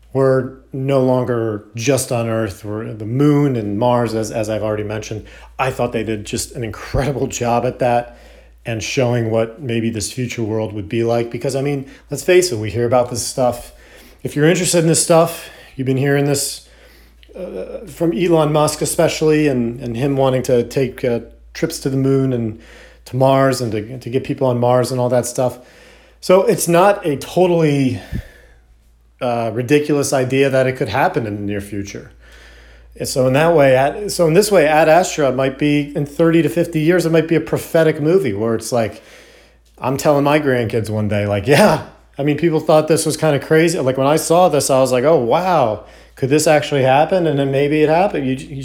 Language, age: English, 40-59